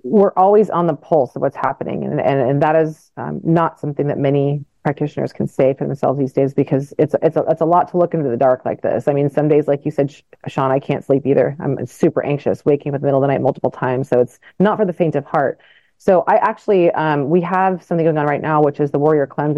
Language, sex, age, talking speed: English, female, 30-49, 275 wpm